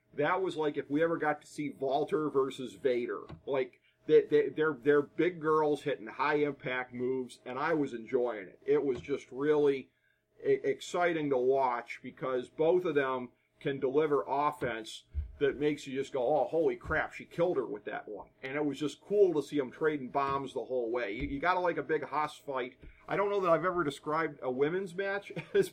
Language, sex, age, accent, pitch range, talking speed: English, male, 40-59, American, 130-165 Hz, 205 wpm